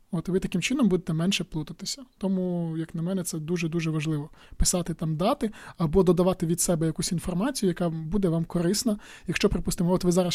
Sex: male